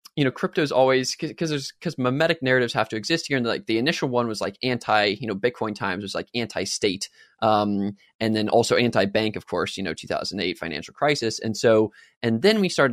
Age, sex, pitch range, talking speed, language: 20-39, male, 110-150 Hz, 230 wpm, English